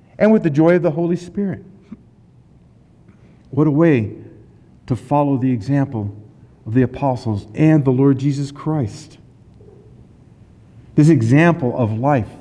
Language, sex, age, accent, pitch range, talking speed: English, male, 50-69, American, 125-175 Hz, 130 wpm